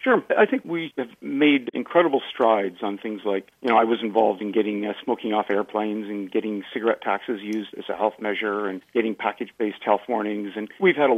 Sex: male